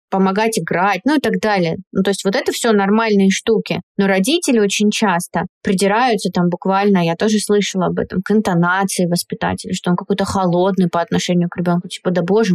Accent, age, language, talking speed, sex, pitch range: native, 20-39, Russian, 190 wpm, female, 175-210 Hz